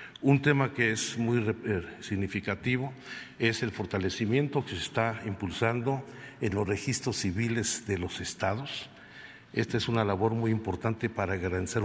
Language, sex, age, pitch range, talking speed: Spanish, male, 50-69, 95-120 Hz, 140 wpm